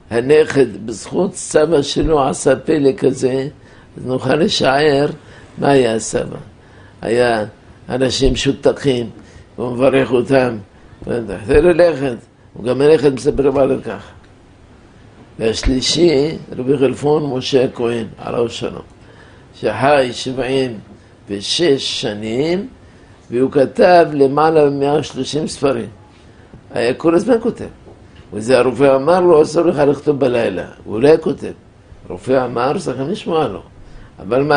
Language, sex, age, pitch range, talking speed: Hebrew, male, 60-79, 115-135 Hz, 115 wpm